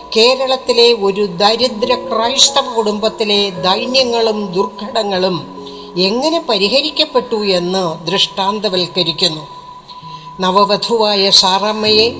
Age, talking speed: 60-79, 65 wpm